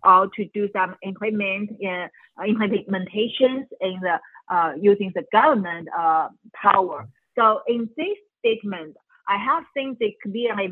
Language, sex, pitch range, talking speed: English, female, 195-245 Hz, 135 wpm